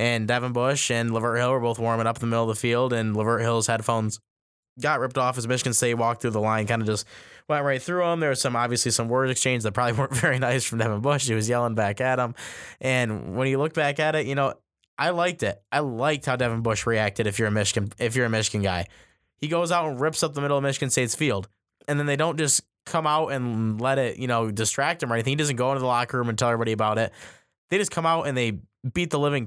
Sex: male